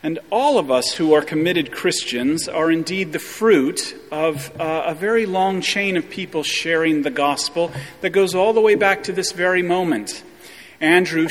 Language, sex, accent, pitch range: English, male, American, 150-195 Hz